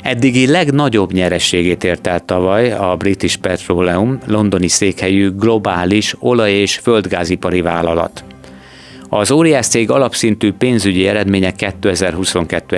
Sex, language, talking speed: male, Hungarian, 110 wpm